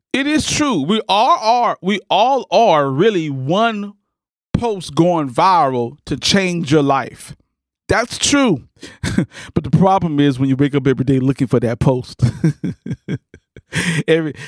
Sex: male